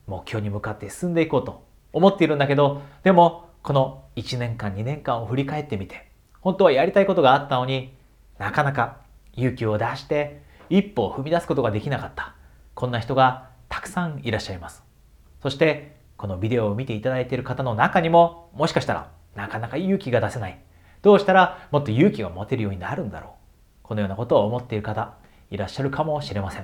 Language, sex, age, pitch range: Japanese, male, 40-59, 100-140 Hz